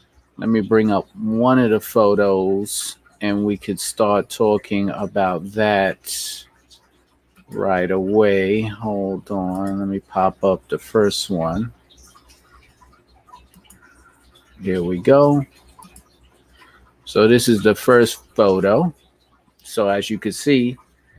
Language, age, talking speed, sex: English, 50-69, 115 wpm, male